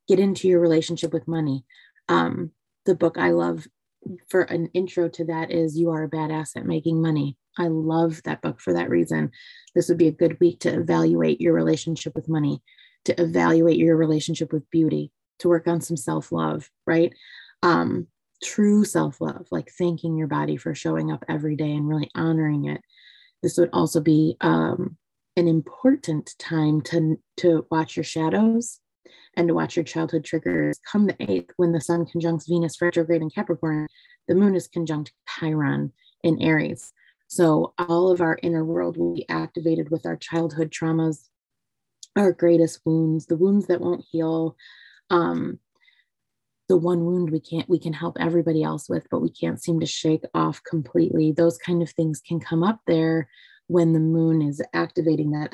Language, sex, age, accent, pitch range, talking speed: English, female, 20-39, American, 150-170 Hz, 175 wpm